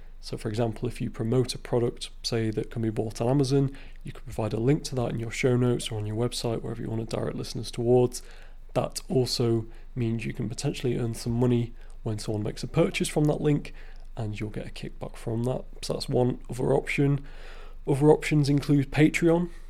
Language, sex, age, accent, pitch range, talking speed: English, male, 30-49, British, 115-135 Hz, 215 wpm